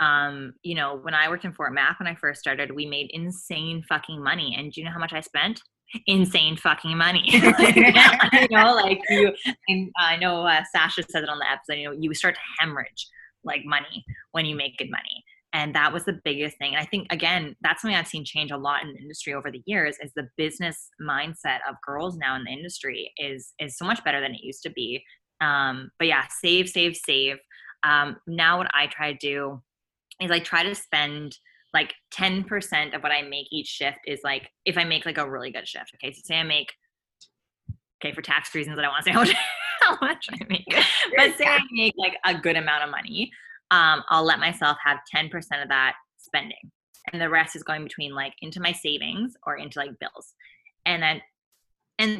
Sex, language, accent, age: female, English, American, 20-39